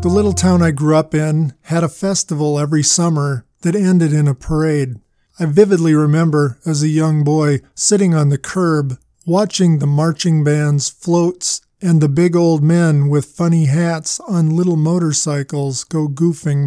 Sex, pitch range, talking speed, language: male, 150-175 Hz, 165 wpm, English